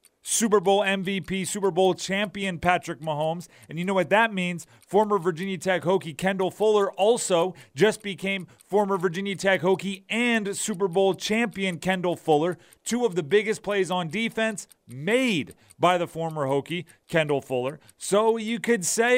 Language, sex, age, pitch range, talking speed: English, male, 30-49, 150-200 Hz, 160 wpm